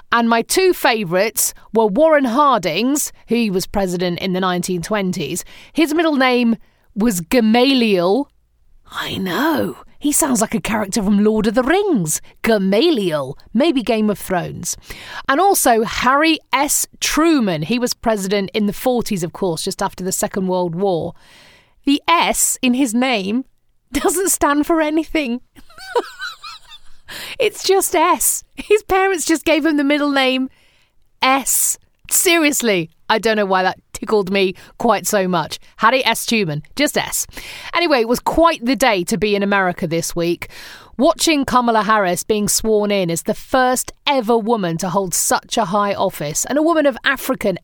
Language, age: English, 30-49